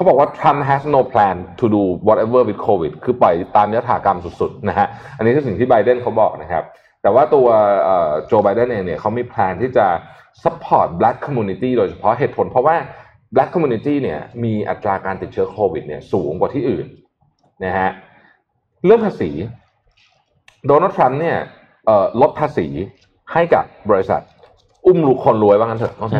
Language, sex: Thai, male